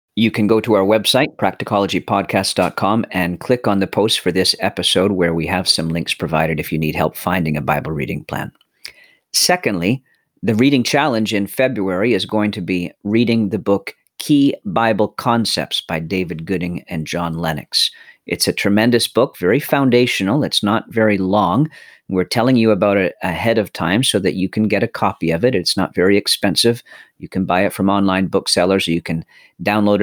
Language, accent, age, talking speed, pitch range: English, American, 40-59, 190 wpm, 90-110 Hz